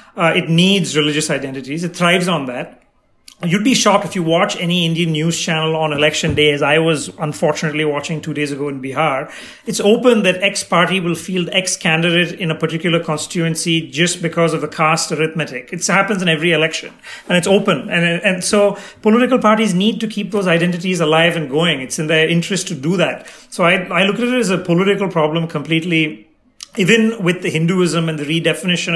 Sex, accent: male, Indian